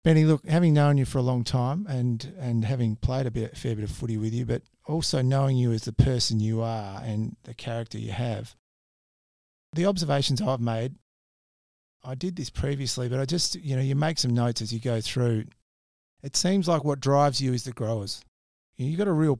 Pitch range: 110-130 Hz